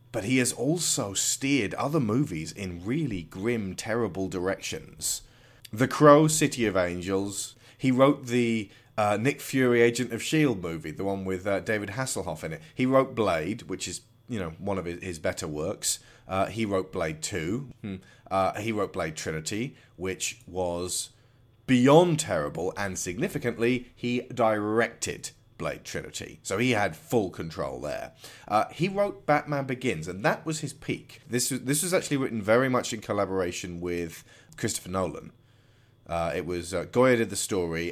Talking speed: 165 wpm